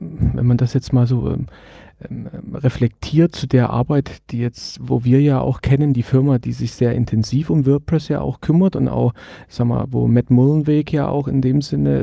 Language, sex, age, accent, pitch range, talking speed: German, male, 40-59, German, 120-145 Hz, 205 wpm